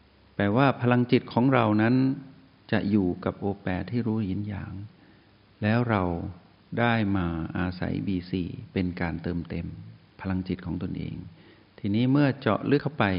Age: 60-79